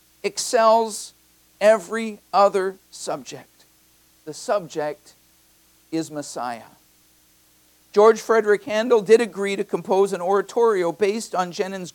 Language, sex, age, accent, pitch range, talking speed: English, male, 50-69, American, 160-225 Hz, 100 wpm